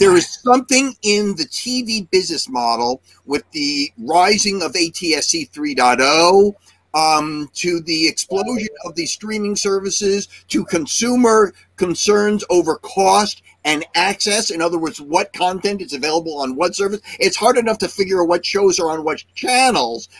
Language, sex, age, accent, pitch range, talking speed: English, male, 50-69, American, 170-220 Hz, 150 wpm